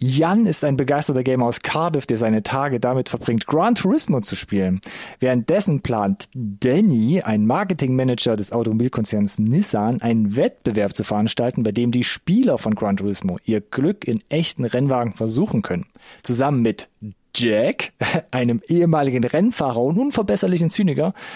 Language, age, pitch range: German, 40-59, 120-160 Hz